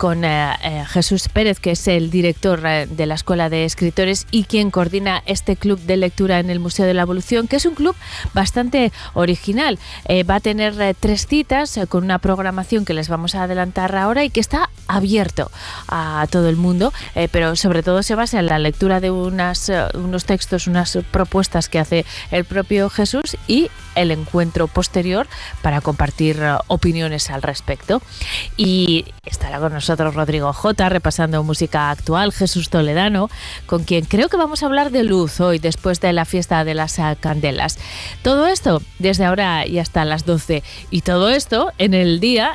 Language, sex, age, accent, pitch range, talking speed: Spanish, female, 30-49, Spanish, 165-200 Hz, 180 wpm